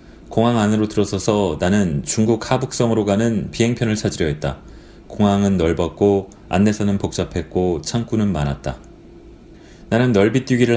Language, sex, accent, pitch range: Korean, male, native, 95-120 Hz